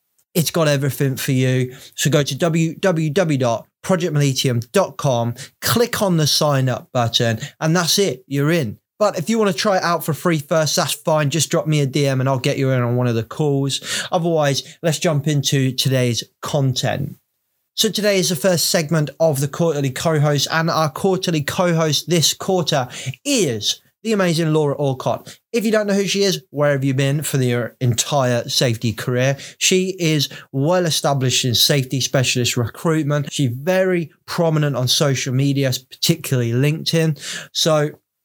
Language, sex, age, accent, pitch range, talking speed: English, male, 20-39, British, 130-165 Hz, 170 wpm